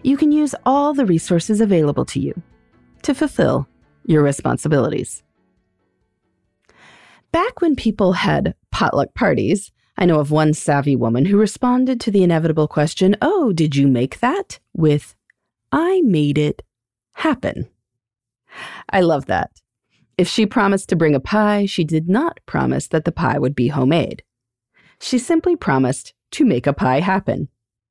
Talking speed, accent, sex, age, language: 150 wpm, American, female, 30-49, English